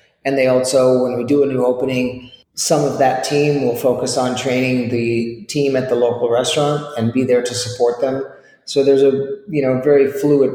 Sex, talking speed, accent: male, 205 wpm, American